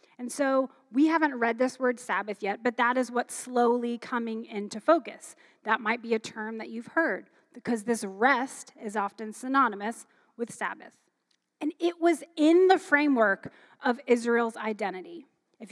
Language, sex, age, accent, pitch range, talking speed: English, female, 30-49, American, 215-280 Hz, 165 wpm